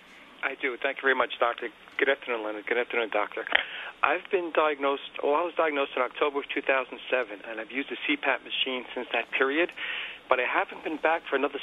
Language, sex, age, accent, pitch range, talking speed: English, male, 50-69, American, 120-150 Hz, 205 wpm